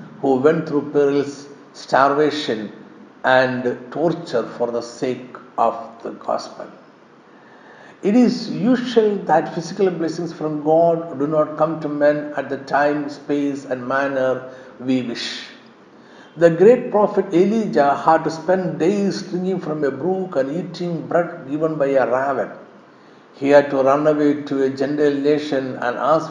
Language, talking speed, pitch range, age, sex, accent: Malayalam, 145 wpm, 135-170 Hz, 60-79, male, native